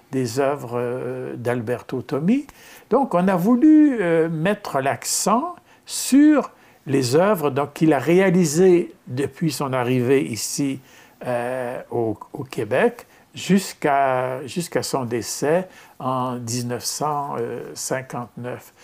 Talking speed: 100 wpm